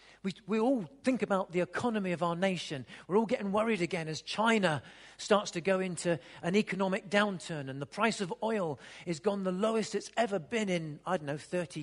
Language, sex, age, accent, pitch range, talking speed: English, male, 40-59, British, 185-275 Hz, 210 wpm